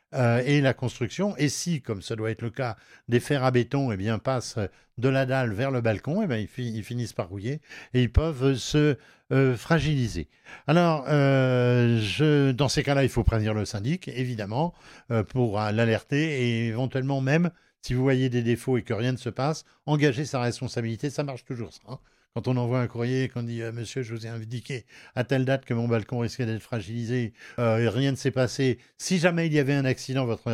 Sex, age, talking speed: male, 60-79, 225 wpm